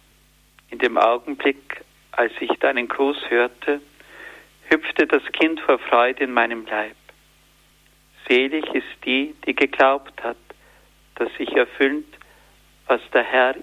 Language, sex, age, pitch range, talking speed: German, male, 50-69, 120-145 Hz, 125 wpm